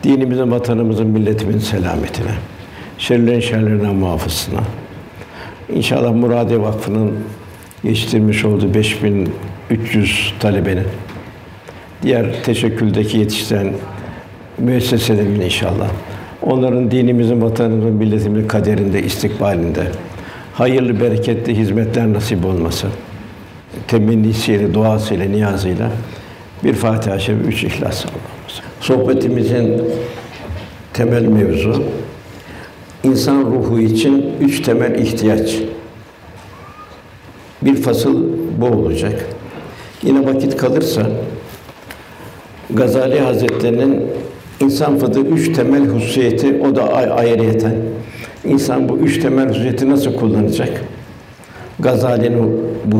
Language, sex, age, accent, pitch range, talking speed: Turkish, male, 60-79, native, 100-120 Hz, 85 wpm